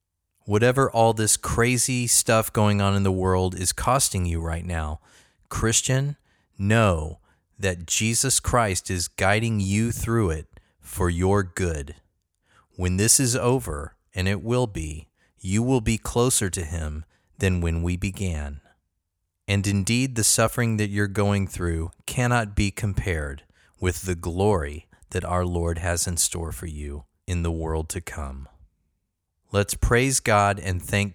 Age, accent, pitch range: 30-49, American, 85-110 Hz